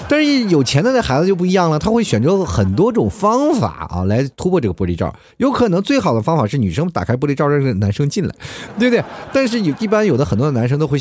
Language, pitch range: Chinese, 100-170 Hz